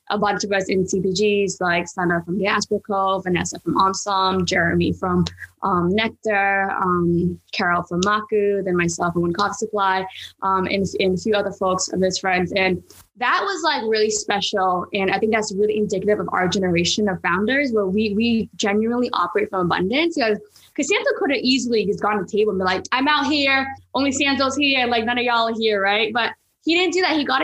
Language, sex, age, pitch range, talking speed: English, female, 10-29, 190-220 Hz, 210 wpm